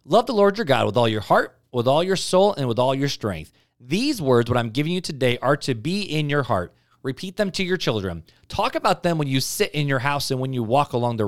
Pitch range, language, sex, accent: 125-180 Hz, English, male, American